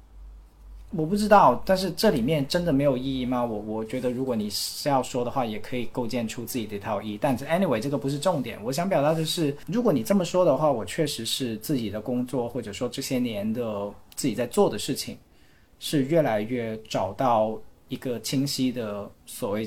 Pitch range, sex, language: 110-155 Hz, male, Chinese